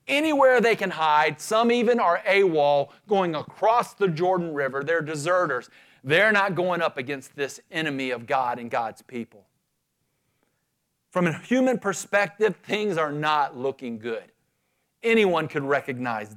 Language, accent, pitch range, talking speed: English, American, 125-190 Hz, 145 wpm